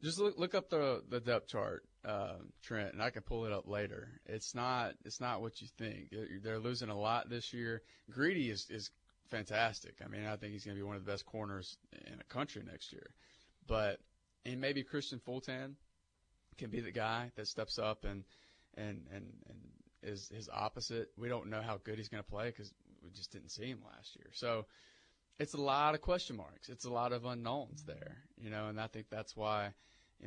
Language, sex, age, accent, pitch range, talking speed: English, male, 30-49, American, 100-120 Hz, 215 wpm